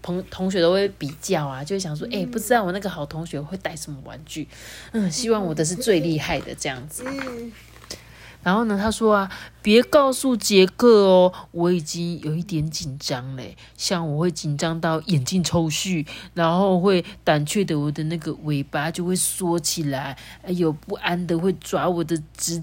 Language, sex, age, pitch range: Chinese, female, 30-49, 165-225 Hz